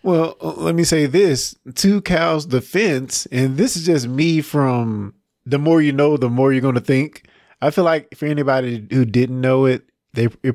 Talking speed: 195 wpm